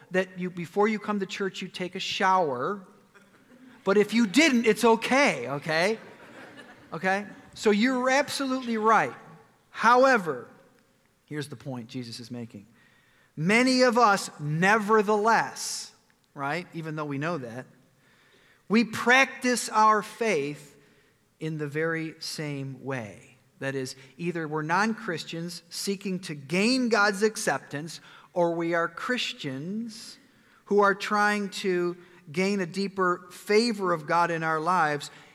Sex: male